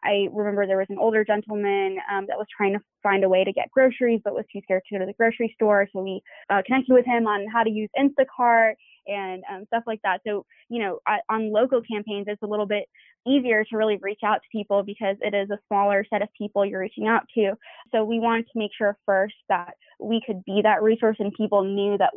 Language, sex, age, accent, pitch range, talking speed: English, female, 20-39, American, 200-225 Hz, 245 wpm